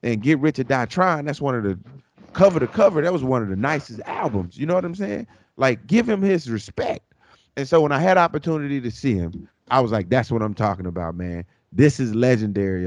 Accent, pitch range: American, 100-140 Hz